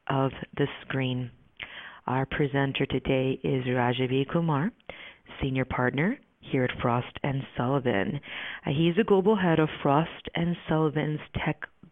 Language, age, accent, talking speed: English, 40-59, American, 115 wpm